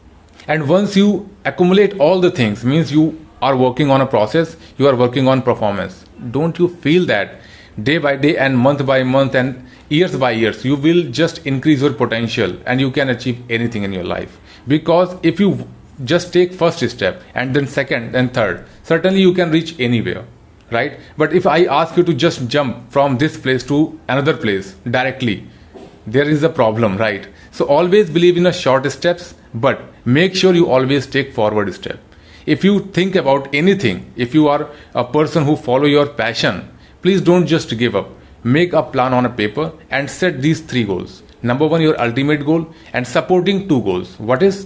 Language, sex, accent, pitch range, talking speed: Hindi, male, native, 120-165 Hz, 190 wpm